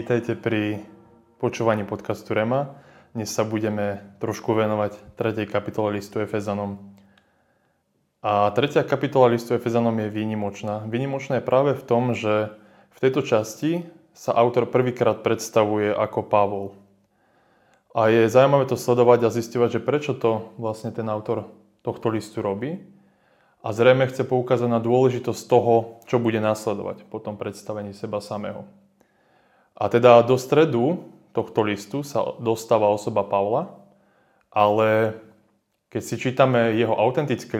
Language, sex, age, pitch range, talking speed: Slovak, male, 20-39, 105-125 Hz, 130 wpm